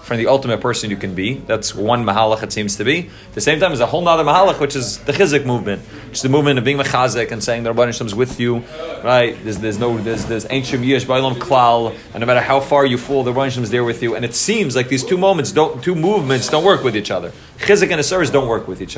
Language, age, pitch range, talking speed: English, 30-49, 115-145 Hz, 265 wpm